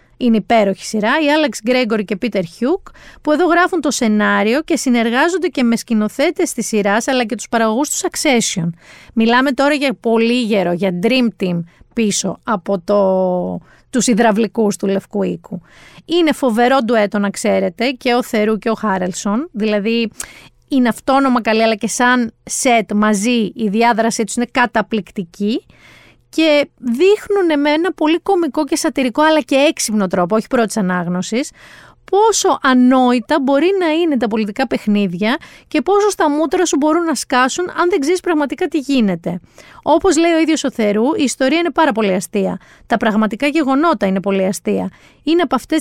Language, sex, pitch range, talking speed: Greek, female, 215-305 Hz, 165 wpm